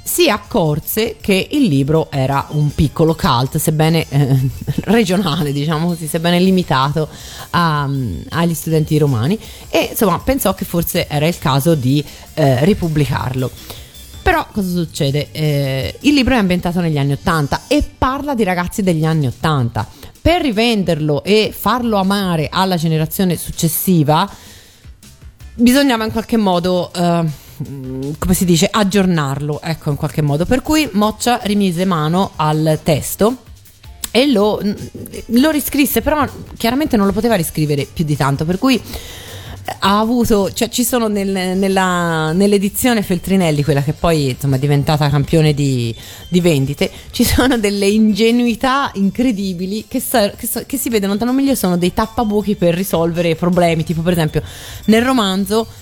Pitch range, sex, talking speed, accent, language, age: 150-215 Hz, female, 145 wpm, native, Italian, 30-49